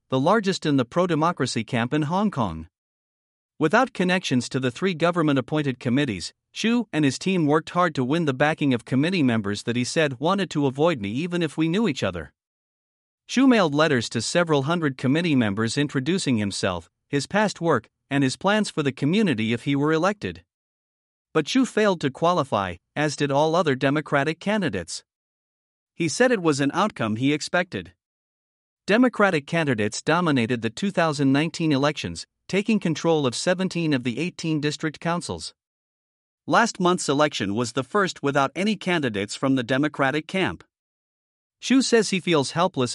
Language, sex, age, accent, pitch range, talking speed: English, male, 50-69, American, 130-175 Hz, 165 wpm